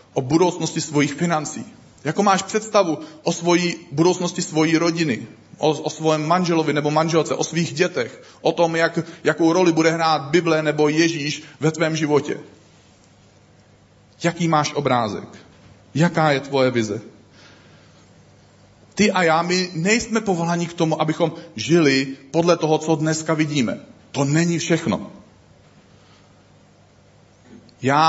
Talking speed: 130 wpm